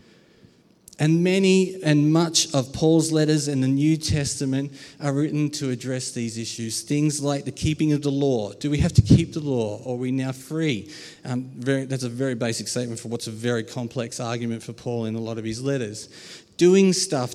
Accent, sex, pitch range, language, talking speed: Australian, male, 130-155 Hz, English, 200 wpm